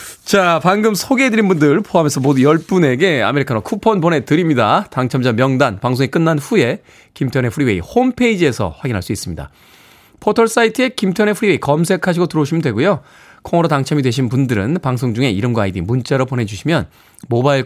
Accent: native